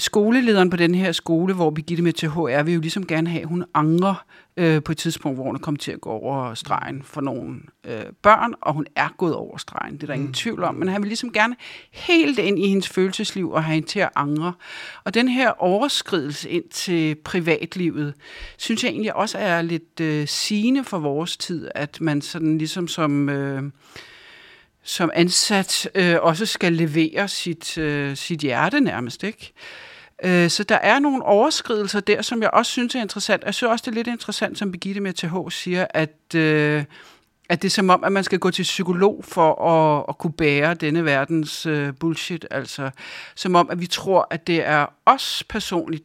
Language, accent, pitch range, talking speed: Danish, native, 155-200 Hz, 200 wpm